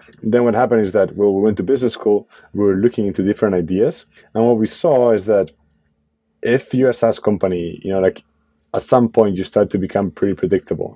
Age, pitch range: 30-49, 95-115 Hz